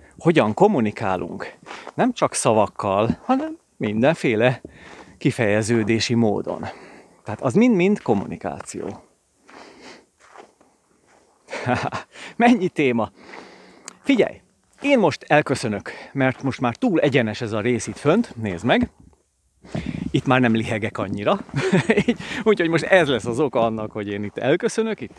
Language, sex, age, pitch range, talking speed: Hungarian, male, 30-49, 110-170 Hz, 115 wpm